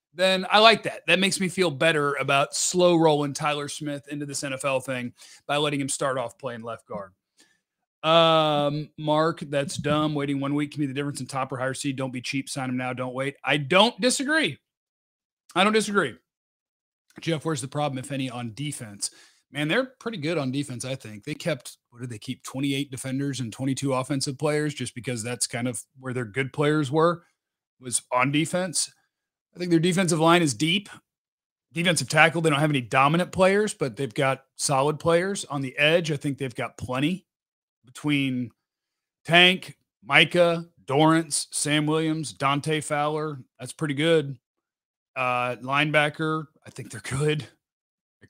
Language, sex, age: English, male, 30-49